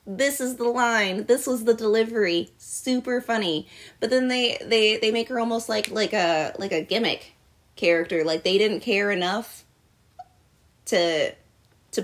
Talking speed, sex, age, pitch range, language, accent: 160 wpm, female, 20-39, 175-220 Hz, English, American